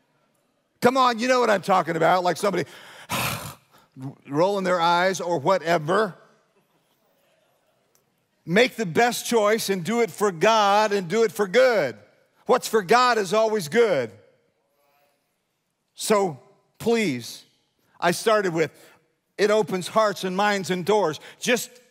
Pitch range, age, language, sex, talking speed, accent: 180-215 Hz, 50-69, English, male, 130 wpm, American